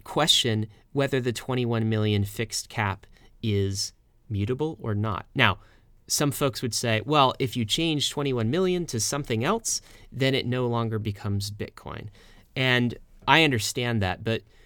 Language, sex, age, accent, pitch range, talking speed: English, male, 30-49, American, 105-125 Hz, 145 wpm